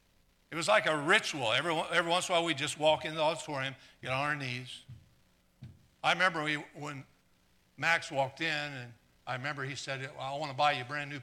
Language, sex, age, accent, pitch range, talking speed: English, male, 60-79, American, 130-185 Hz, 210 wpm